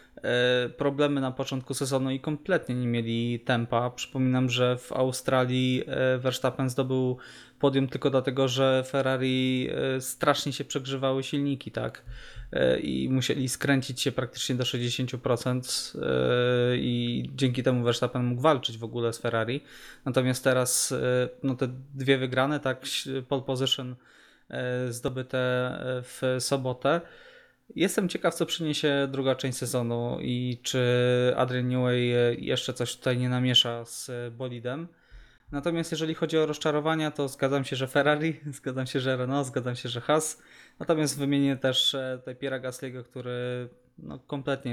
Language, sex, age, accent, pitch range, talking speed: Polish, male, 20-39, native, 125-135 Hz, 135 wpm